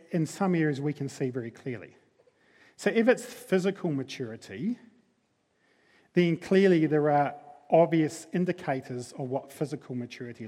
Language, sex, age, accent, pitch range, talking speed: English, male, 40-59, British, 140-190 Hz, 130 wpm